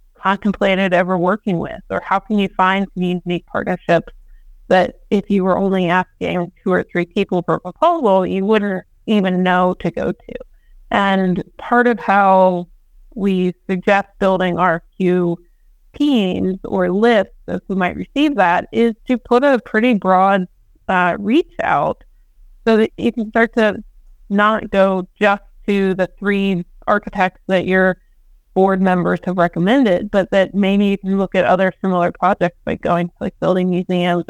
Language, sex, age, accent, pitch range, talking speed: English, female, 30-49, American, 180-215 Hz, 165 wpm